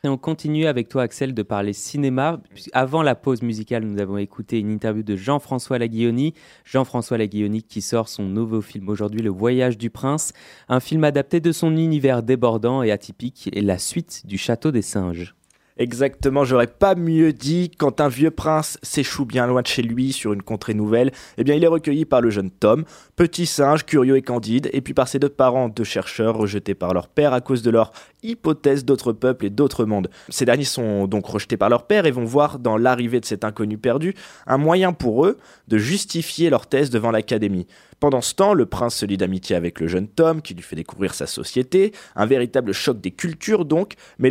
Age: 20-39